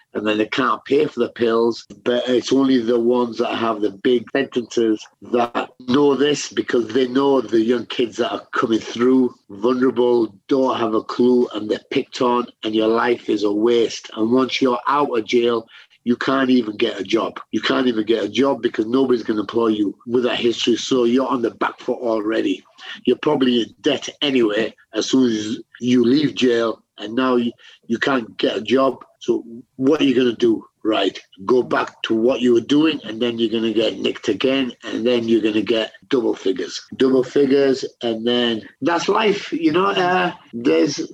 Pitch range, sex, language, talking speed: 115-140 Hz, male, English, 205 wpm